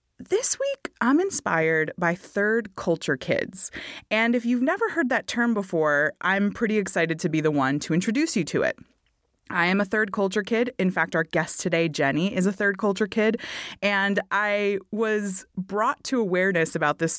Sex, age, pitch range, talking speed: female, 20-39, 165-230 Hz, 185 wpm